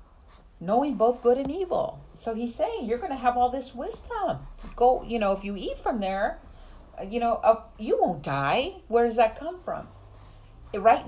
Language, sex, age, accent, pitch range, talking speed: English, female, 40-59, American, 150-225 Hz, 185 wpm